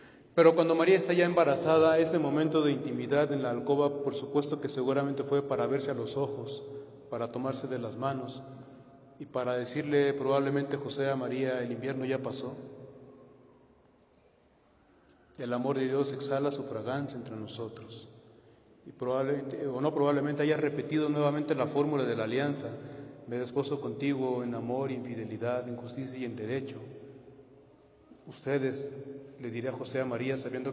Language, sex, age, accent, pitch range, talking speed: Spanish, male, 40-59, Mexican, 125-140 Hz, 155 wpm